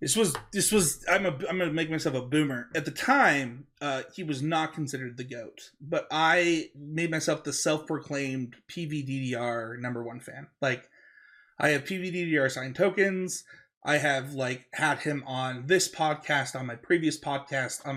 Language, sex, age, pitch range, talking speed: English, male, 30-49, 130-160 Hz, 165 wpm